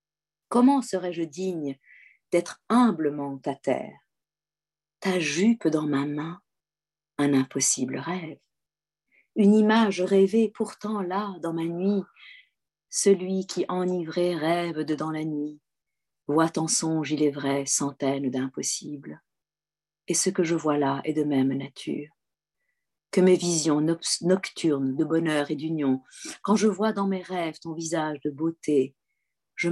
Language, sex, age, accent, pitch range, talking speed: French, female, 50-69, French, 145-185 Hz, 135 wpm